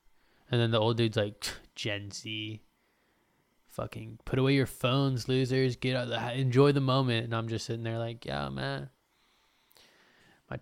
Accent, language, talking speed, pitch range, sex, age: American, English, 170 wpm, 120-135 Hz, male, 20-39